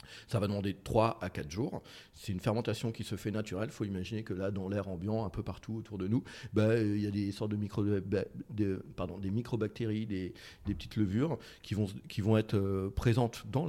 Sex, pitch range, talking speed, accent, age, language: male, 100-115 Hz, 235 wpm, French, 40-59, French